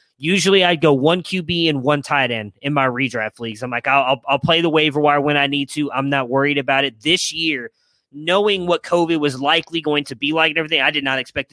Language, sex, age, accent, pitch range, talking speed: English, male, 20-39, American, 130-160 Hz, 245 wpm